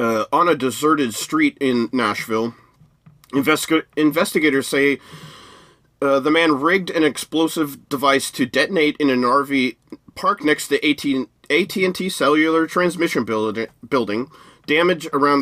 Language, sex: English, male